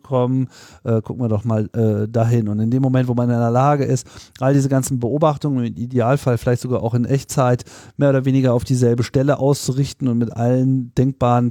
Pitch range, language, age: 110-135 Hz, German, 40-59